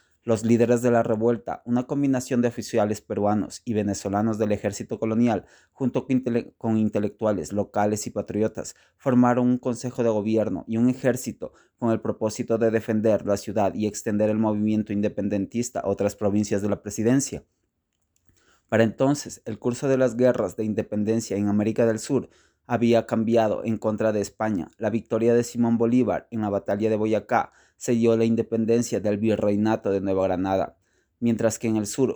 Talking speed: 170 wpm